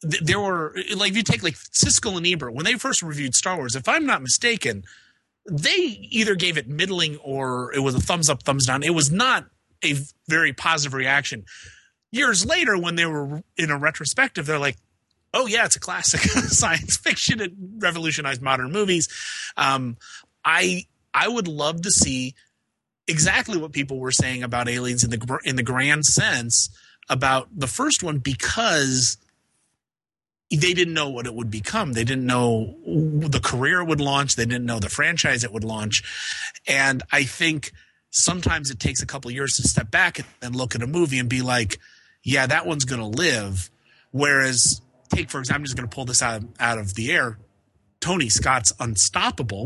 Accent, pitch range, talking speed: American, 120-165 Hz, 185 wpm